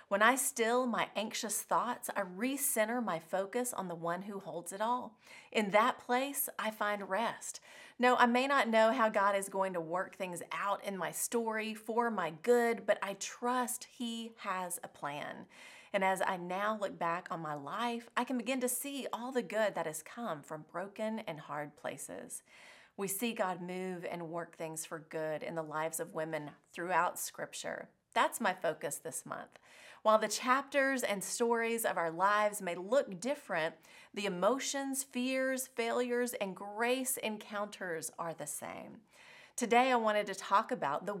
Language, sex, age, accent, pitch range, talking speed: English, female, 30-49, American, 180-245 Hz, 180 wpm